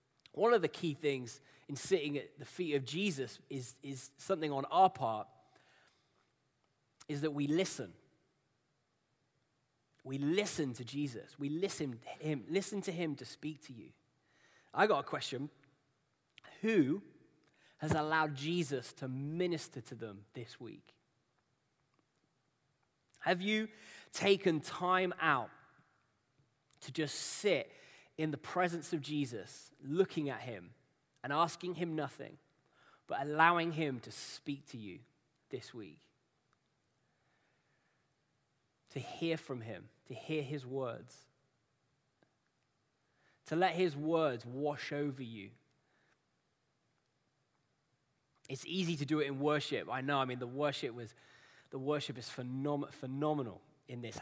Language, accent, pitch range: English, British, 130-155 Hz